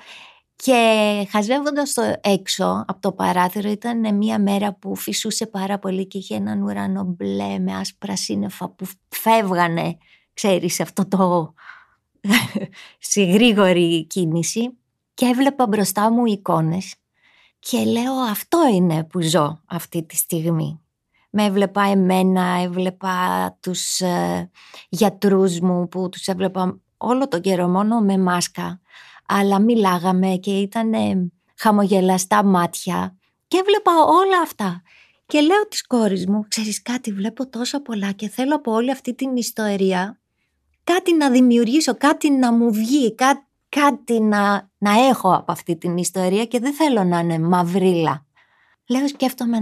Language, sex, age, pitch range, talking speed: Greek, female, 20-39, 180-235 Hz, 130 wpm